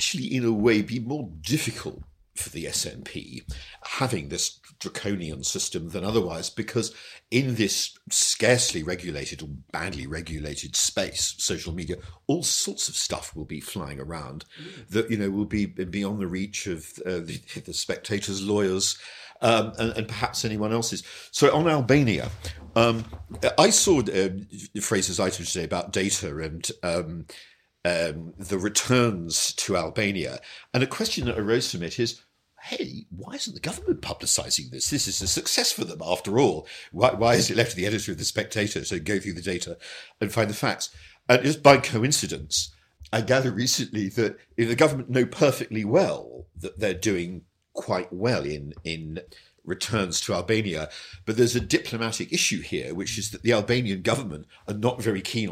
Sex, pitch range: male, 90-120 Hz